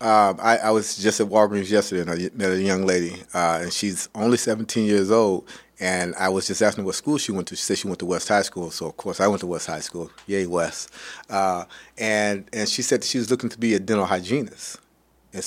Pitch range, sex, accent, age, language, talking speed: 95-115 Hz, male, American, 30-49, English, 250 wpm